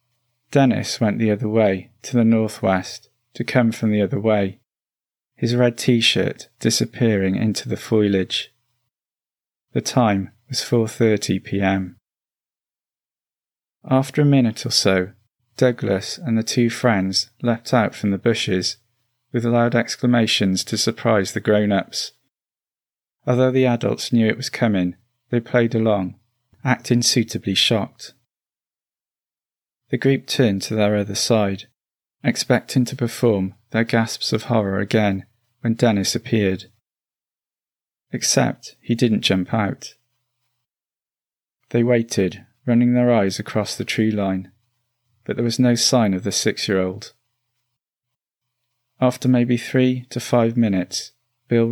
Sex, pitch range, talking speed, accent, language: male, 105-120 Hz, 130 wpm, British, English